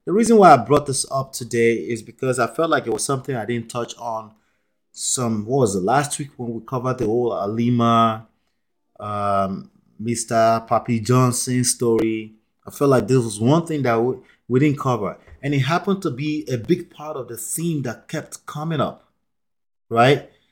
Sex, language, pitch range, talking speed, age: male, English, 115-145 Hz, 190 wpm, 30-49